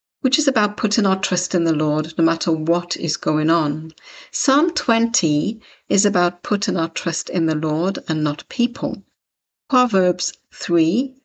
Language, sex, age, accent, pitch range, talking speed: English, female, 60-79, British, 160-210 Hz, 160 wpm